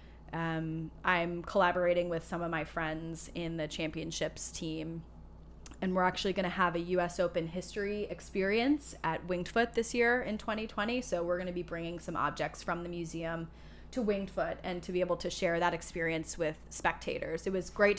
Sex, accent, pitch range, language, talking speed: female, American, 165-185 Hz, English, 190 wpm